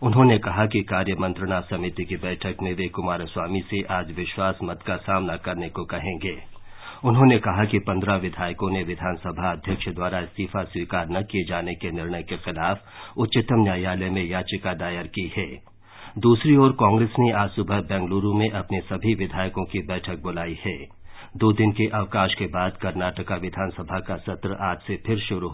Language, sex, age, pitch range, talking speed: English, male, 50-69, 90-105 Hz, 170 wpm